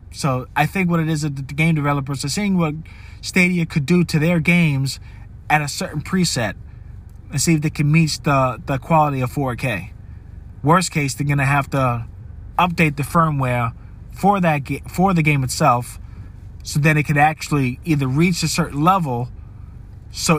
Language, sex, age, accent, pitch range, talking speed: English, male, 20-39, American, 110-160 Hz, 180 wpm